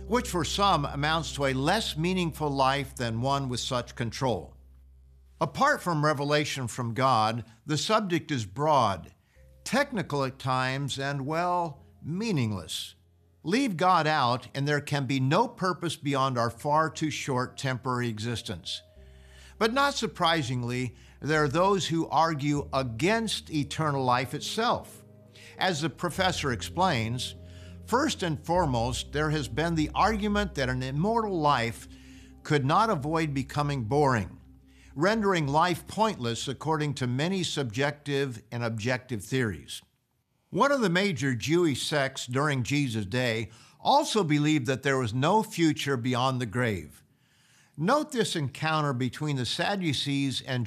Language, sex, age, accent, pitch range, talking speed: English, male, 50-69, American, 120-160 Hz, 135 wpm